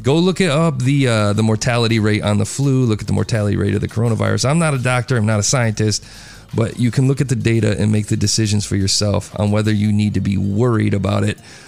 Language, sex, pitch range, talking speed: English, male, 105-120 Hz, 255 wpm